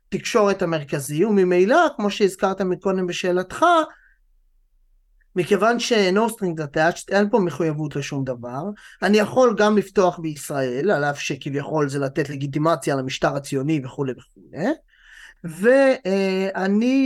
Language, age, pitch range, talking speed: Hebrew, 30-49, 150-210 Hz, 115 wpm